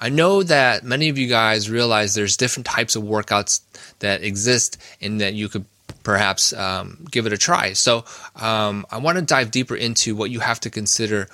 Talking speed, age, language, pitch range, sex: 200 wpm, 20-39, English, 100-125 Hz, male